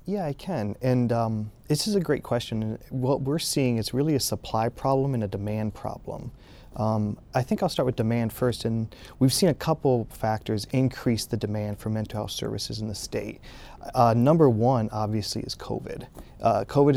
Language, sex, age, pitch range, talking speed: English, male, 30-49, 110-130 Hz, 190 wpm